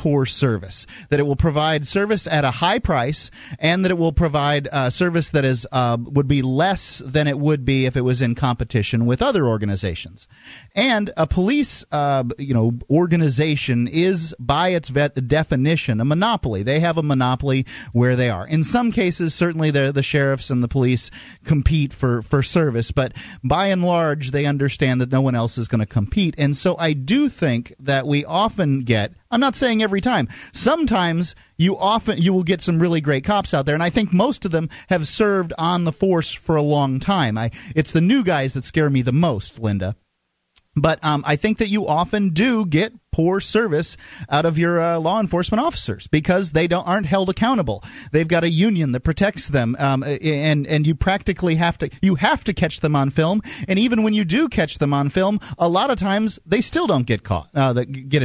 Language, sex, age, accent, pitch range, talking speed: English, male, 30-49, American, 130-185 Hz, 210 wpm